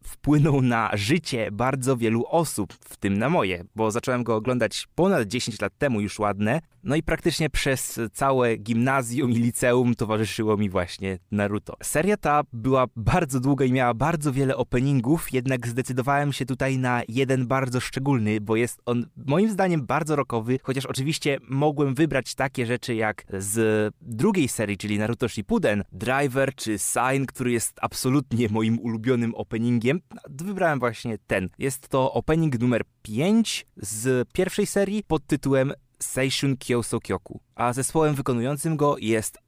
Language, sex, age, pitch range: Polish, male, 20-39, 110-145 Hz